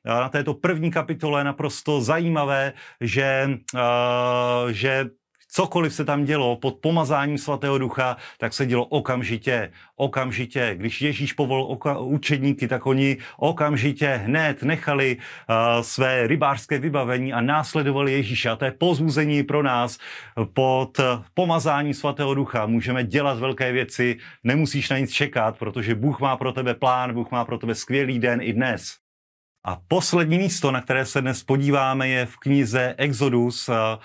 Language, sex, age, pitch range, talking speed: Slovak, male, 30-49, 120-145 Hz, 145 wpm